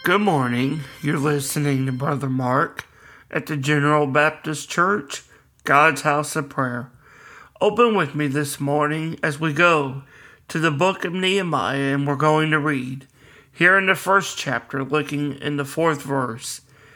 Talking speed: 155 wpm